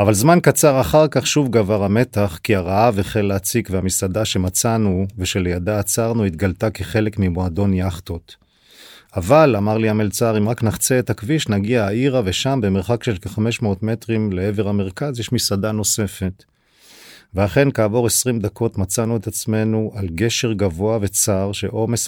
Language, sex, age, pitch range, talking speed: Hebrew, male, 40-59, 95-115 Hz, 145 wpm